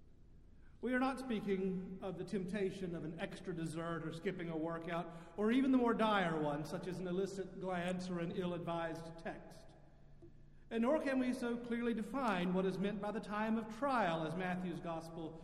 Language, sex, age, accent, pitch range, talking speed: English, male, 50-69, American, 165-220 Hz, 185 wpm